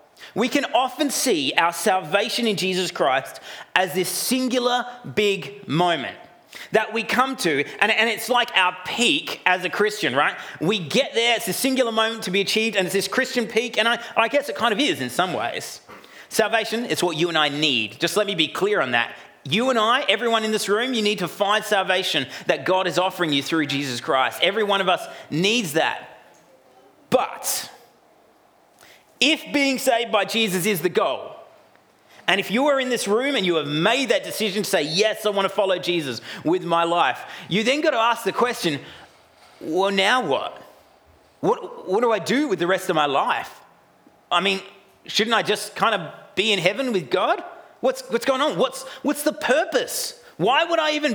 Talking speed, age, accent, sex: 200 wpm, 30-49, Australian, male